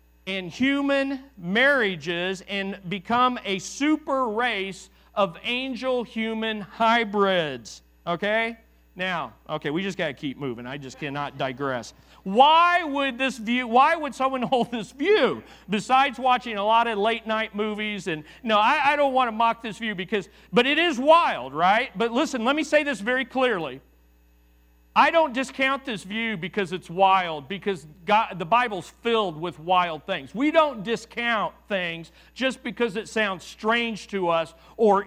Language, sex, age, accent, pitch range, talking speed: English, male, 40-59, American, 185-250 Hz, 160 wpm